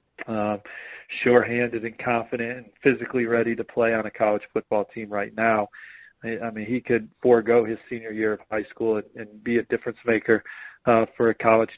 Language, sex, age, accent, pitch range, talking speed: English, male, 40-59, American, 110-120 Hz, 200 wpm